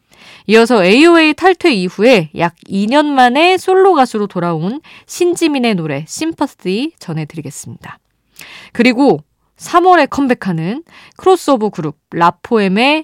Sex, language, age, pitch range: female, Korean, 20-39, 170-265 Hz